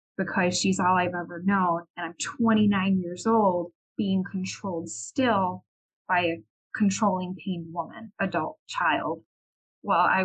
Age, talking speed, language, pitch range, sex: 20-39, 135 wpm, English, 180-220 Hz, female